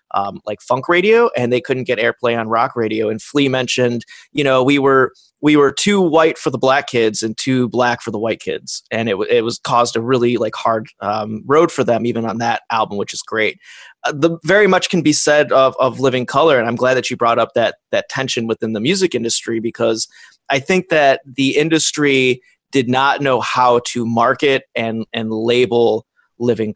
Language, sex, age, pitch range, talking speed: English, male, 30-49, 115-145 Hz, 215 wpm